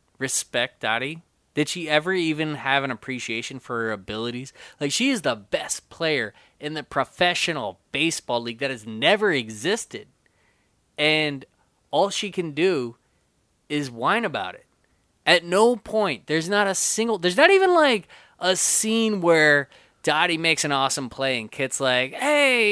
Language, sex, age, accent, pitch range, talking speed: English, male, 20-39, American, 120-185 Hz, 155 wpm